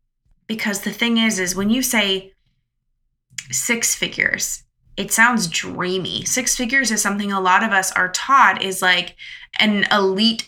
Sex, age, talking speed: female, 20-39, 155 wpm